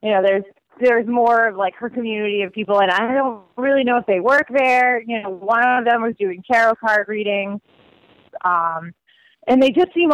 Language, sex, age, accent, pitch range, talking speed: English, female, 20-39, American, 205-250 Hz, 205 wpm